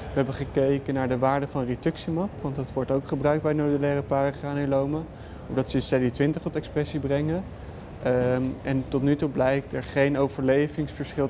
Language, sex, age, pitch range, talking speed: Dutch, male, 20-39, 125-140 Hz, 160 wpm